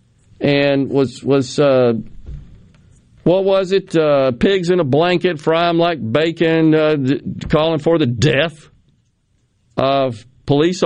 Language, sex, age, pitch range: English, male, 50-69, 130-200 Hz